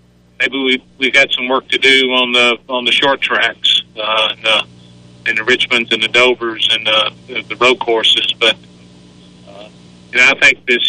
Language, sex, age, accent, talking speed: English, male, 40-59, American, 185 wpm